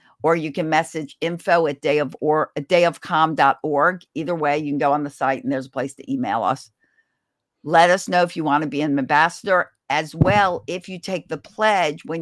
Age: 50-69